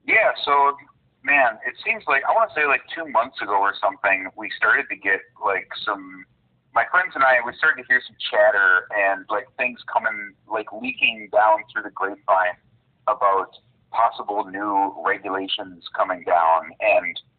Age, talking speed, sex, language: 30-49, 165 wpm, male, English